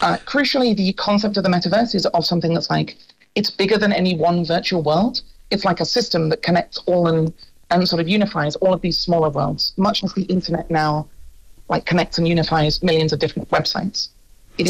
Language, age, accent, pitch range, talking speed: English, 40-59, British, 160-200 Hz, 205 wpm